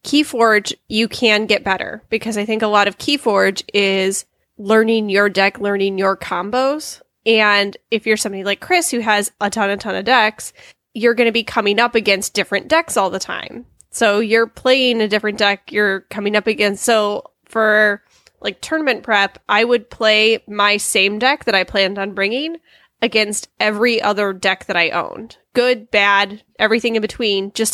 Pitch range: 200-235 Hz